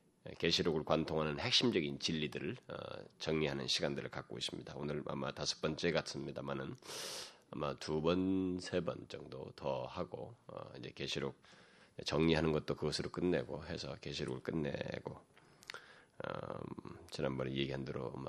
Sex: male